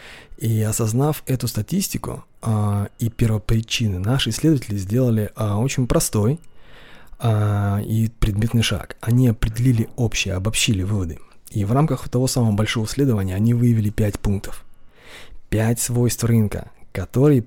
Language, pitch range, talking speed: Russian, 105-125 Hz, 125 wpm